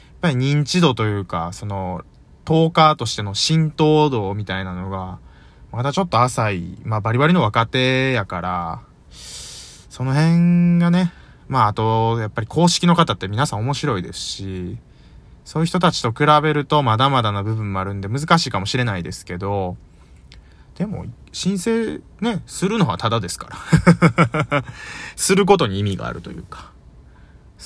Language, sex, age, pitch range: Japanese, male, 20-39, 90-150 Hz